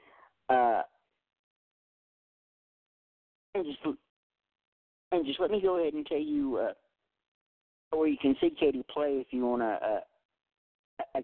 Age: 50-69